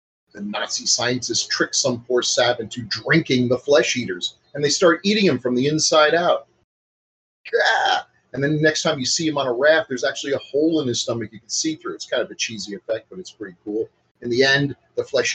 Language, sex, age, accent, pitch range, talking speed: English, male, 40-59, American, 105-165 Hz, 230 wpm